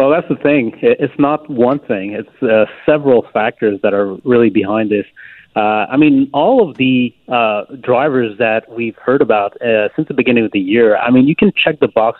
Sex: male